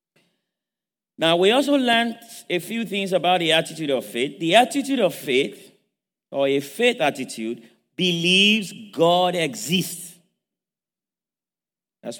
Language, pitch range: English, 155-200 Hz